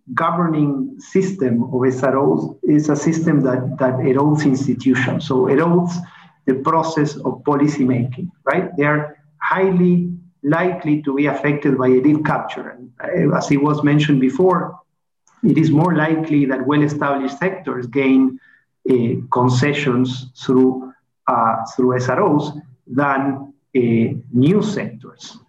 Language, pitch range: English, 135-175 Hz